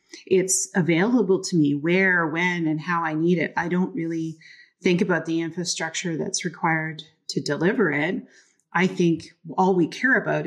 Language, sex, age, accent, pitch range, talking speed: English, female, 30-49, American, 160-190 Hz, 165 wpm